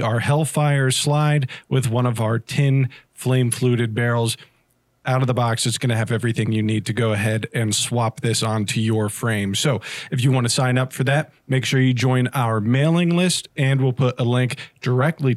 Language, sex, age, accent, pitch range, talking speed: English, male, 40-59, American, 115-135 Hz, 205 wpm